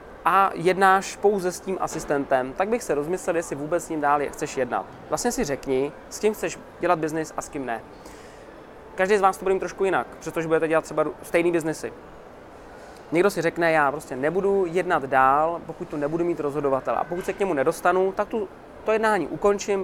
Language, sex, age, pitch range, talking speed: Czech, male, 20-39, 145-185 Hz, 200 wpm